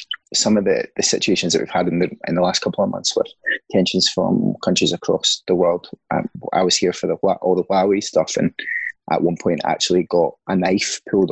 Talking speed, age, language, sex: 225 wpm, 20-39, English, male